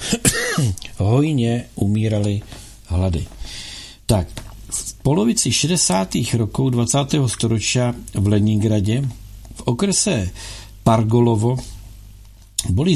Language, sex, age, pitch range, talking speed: Czech, male, 50-69, 100-135 Hz, 75 wpm